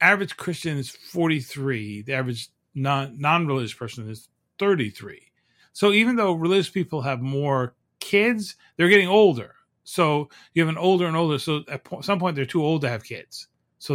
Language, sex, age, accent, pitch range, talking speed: English, male, 40-59, American, 120-170 Hz, 175 wpm